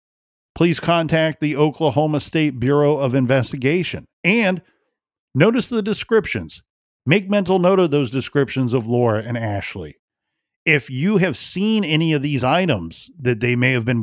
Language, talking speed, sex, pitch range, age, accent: English, 150 wpm, male, 120-155 Hz, 40-59, American